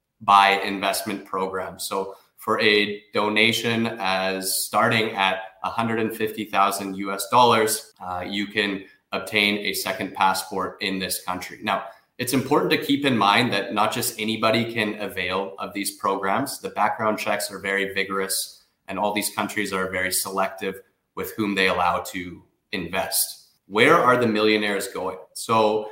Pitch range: 100-110 Hz